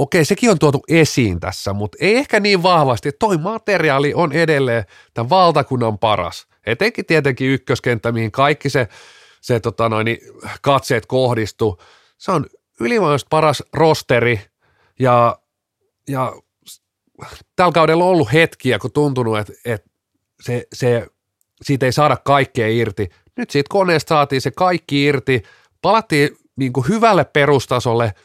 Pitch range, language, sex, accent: 110-145 Hz, Finnish, male, native